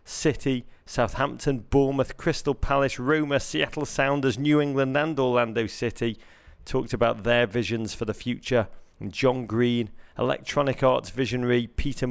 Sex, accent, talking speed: male, British, 135 wpm